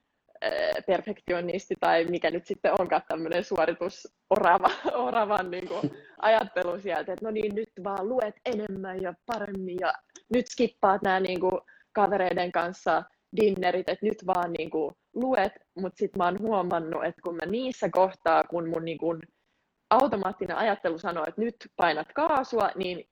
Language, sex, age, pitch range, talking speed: Finnish, female, 20-39, 170-210 Hz, 145 wpm